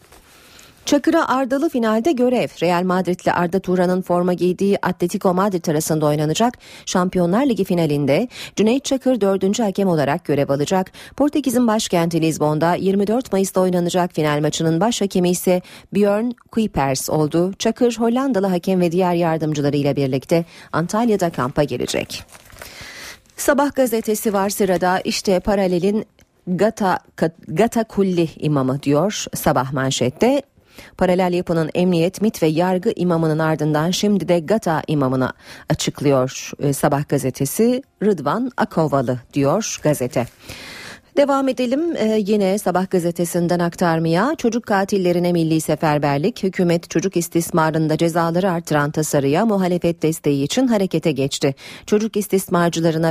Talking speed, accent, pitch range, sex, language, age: 115 wpm, native, 155-205 Hz, female, Turkish, 40-59